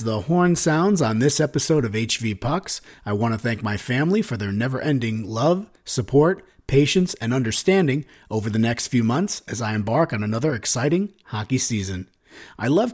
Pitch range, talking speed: 115-165 Hz, 175 wpm